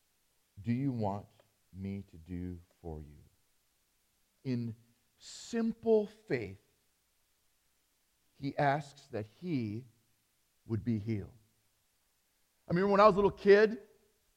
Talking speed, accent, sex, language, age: 110 wpm, American, male, English, 40-59